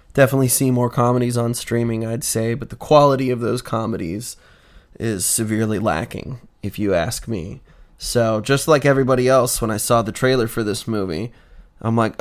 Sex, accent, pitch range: male, American, 115-135 Hz